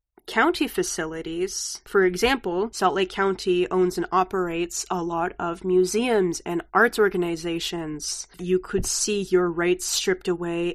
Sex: female